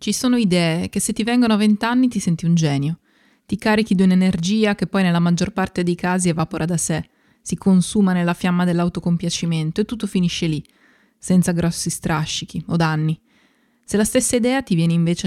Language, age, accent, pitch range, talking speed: Italian, 20-39, native, 170-220 Hz, 190 wpm